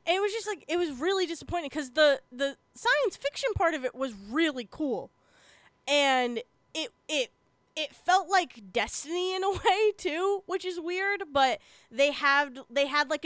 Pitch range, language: 235-320 Hz, English